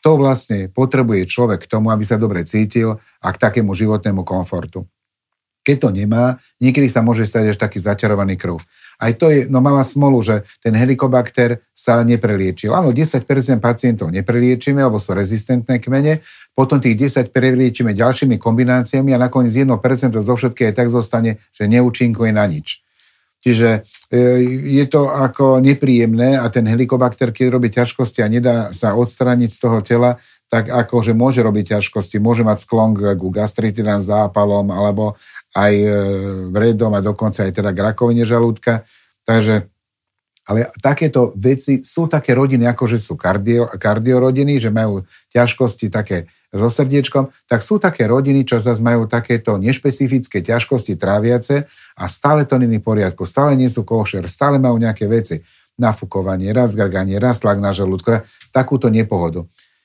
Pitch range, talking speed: 105-130 Hz, 150 wpm